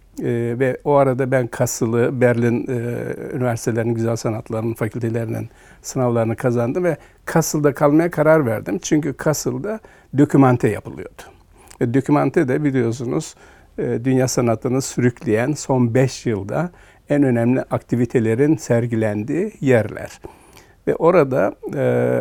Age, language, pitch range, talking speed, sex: 60-79, Turkish, 115-145 Hz, 115 wpm, male